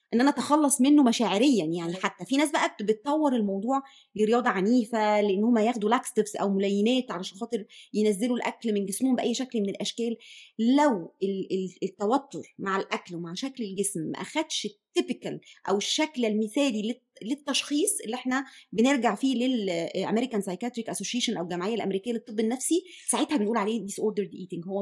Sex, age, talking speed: female, 20-39, 145 wpm